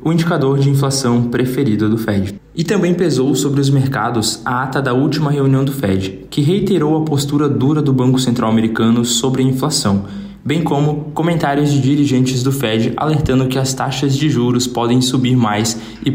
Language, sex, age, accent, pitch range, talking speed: Portuguese, male, 20-39, Brazilian, 120-150 Hz, 180 wpm